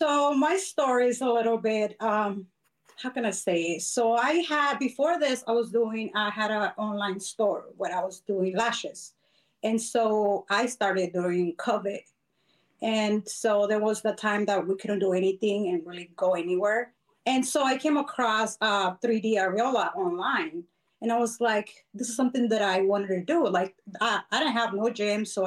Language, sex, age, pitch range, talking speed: English, female, 30-49, 200-245 Hz, 185 wpm